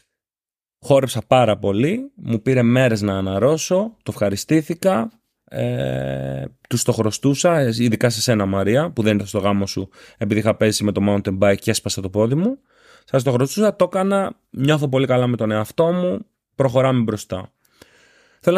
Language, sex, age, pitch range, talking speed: Greek, male, 30-49, 110-155 Hz, 165 wpm